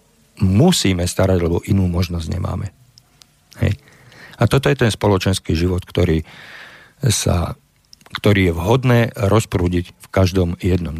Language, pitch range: Slovak, 90-110 Hz